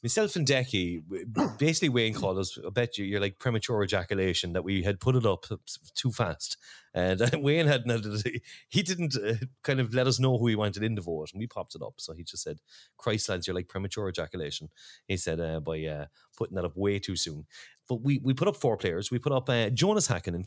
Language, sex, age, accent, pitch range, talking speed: English, male, 30-49, Irish, 90-130 Hz, 230 wpm